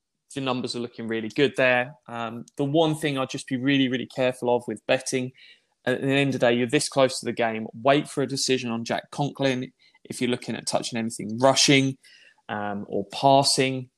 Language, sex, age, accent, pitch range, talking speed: English, male, 20-39, British, 115-135 Hz, 210 wpm